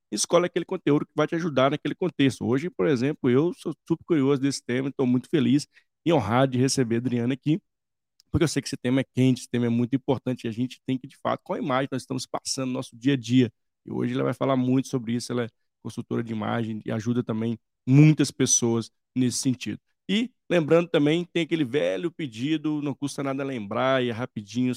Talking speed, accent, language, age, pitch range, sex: 225 wpm, Brazilian, Portuguese, 20-39, 120-140 Hz, male